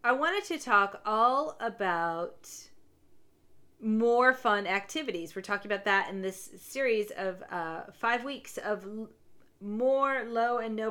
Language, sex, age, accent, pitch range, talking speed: English, female, 40-59, American, 195-290 Hz, 140 wpm